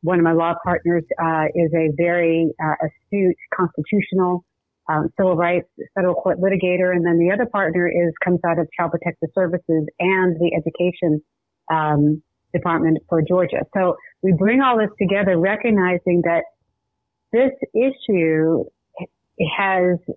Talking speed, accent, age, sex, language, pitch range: 145 wpm, American, 40-59, female, English, 170-215 Hz